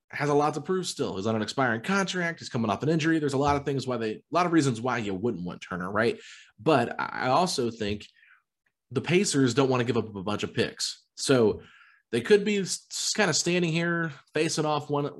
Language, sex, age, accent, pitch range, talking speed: English, male, 30-49, American, 110-145 Hz, 235 wpm